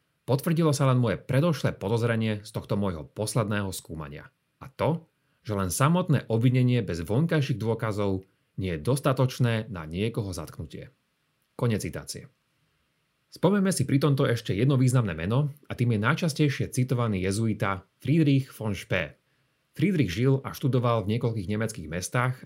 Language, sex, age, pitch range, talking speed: Slovak, male, 30-49, 105-140 Hz, 140 wpm